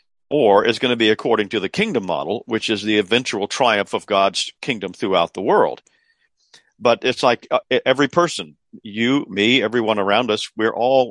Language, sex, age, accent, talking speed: English, male, 50-69, American, 185 wpm